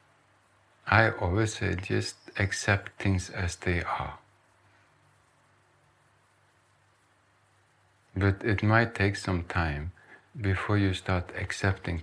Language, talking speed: English, 95 wpm